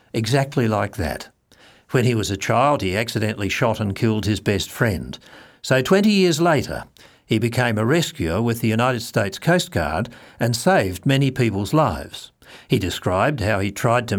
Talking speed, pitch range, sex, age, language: 175 wpm, 110-155 Hz, male, 60-79, English